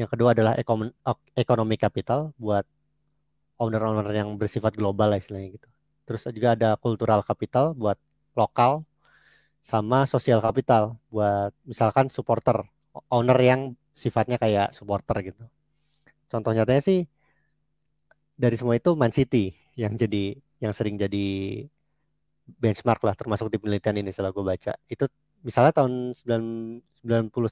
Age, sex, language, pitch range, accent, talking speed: 30-49, male, Indonesian, 110-145 Hz, native, 125 wpm